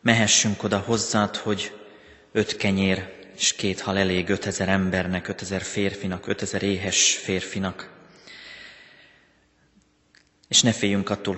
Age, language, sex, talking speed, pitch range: 30-49, Hungarian, male, 110 wpm, 95-100 Hz